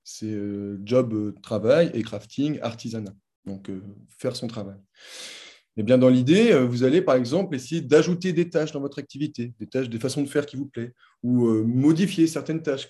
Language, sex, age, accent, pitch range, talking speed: French, male, 20-39, French, 110-145 Hz, 170 wpm